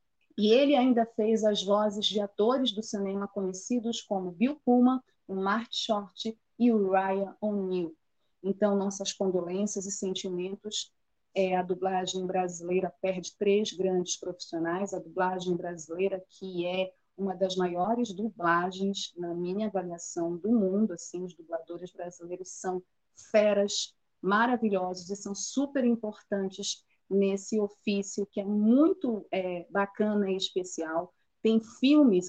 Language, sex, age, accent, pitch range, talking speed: Portuguese, female, 30-49, Brazilian, 185-220 Hz, 130 wpm